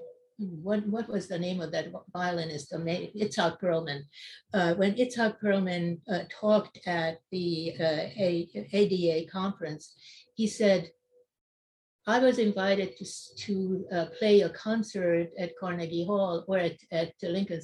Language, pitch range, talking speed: English, 170-210 Hz, 135 wpm